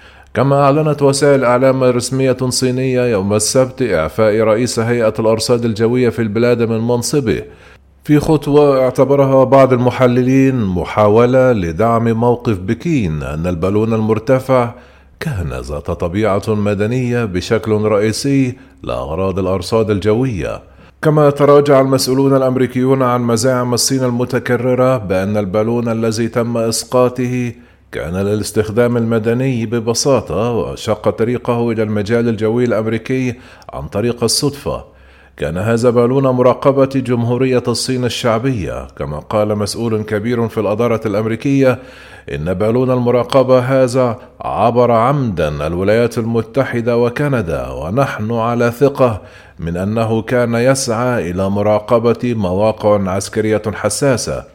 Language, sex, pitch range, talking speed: Arabic, male, 105-130 Hz, 110 wpm